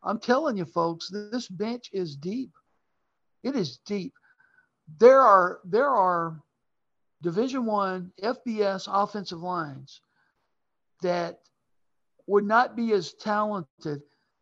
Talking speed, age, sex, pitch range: 110 wpm, 60-79, male, 180-240 Hz